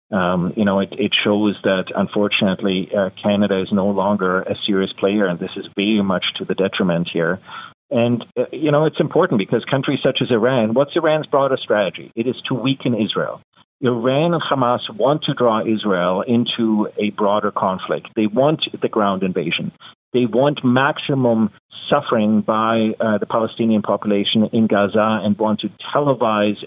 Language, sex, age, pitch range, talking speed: English, male, 40-59, 105-125 Hz, 170 wpm